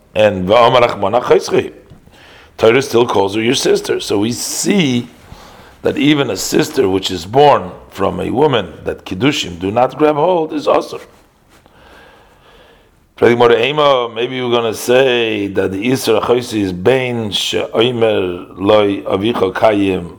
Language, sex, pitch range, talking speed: English, male, 100-130 Hz, 120 wpm